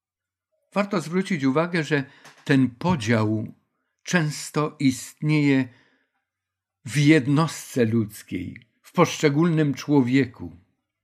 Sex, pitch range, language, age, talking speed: male, 125-155 Hz, Polish, 50-69, 75 wpm